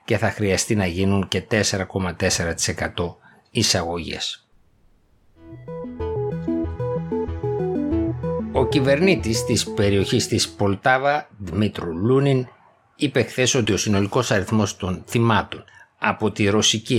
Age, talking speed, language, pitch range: 60-79, 90 wpm, Greek, 95-120 Hz